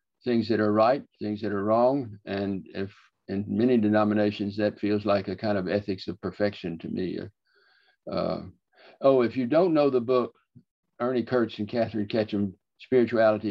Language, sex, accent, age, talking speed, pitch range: English, male, American, 60-79, 170 wpm, 105-125 Hz